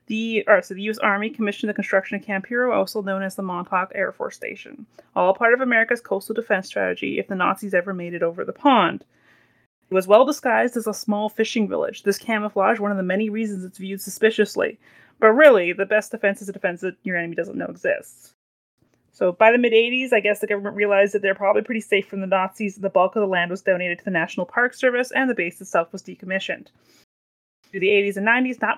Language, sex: English, female